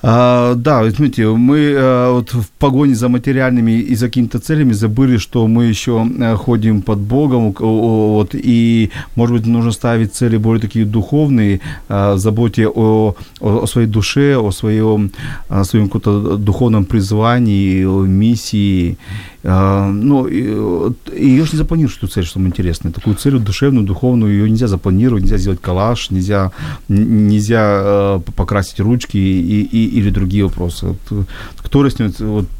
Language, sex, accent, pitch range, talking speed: Ukrainian, male, native, 100-120 Hz, 155 wpm